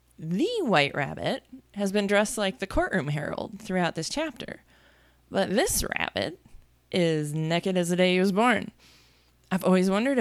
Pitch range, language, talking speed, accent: 165-220 Hz, English, 160 wpm, American